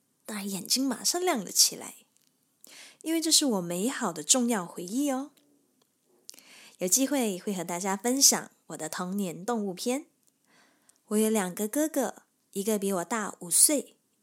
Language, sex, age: Chinese, female, 20-39